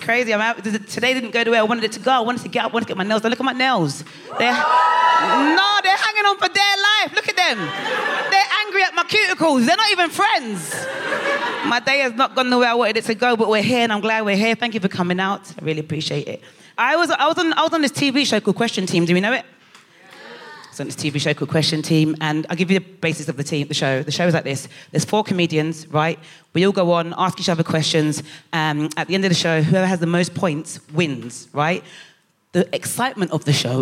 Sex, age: female, 30-49